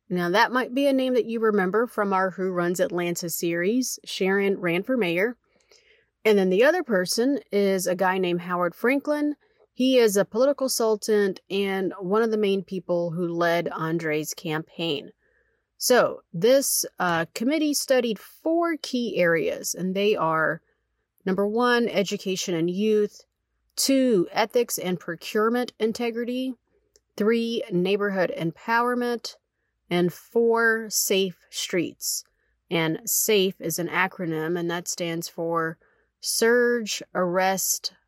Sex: female